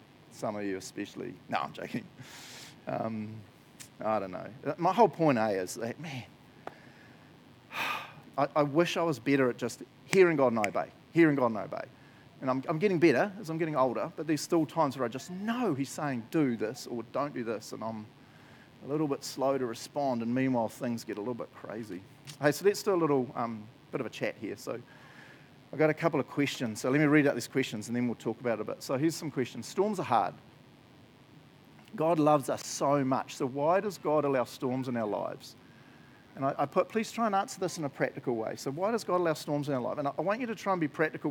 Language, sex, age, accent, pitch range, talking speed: English, male, 40-59, Australian, 130-160 Hz, 235 wpm